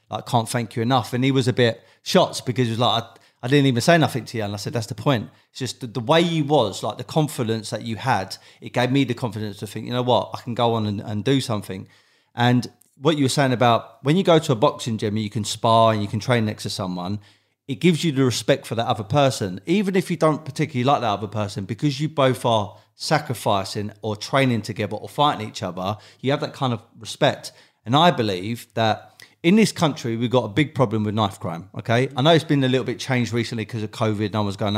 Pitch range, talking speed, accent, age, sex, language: 110-135 Hz, 260 wpm, British, 30-49, male, English